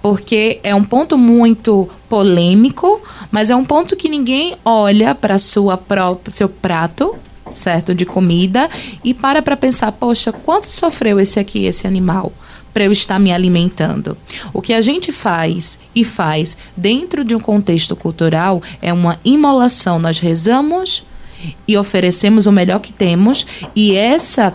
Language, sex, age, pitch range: Portuguese, female, 20-39, 175-225 Hz